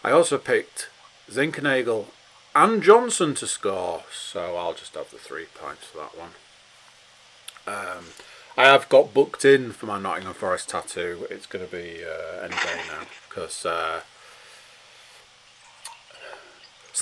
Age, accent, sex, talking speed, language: 40-59, British, male, 140 wpm, English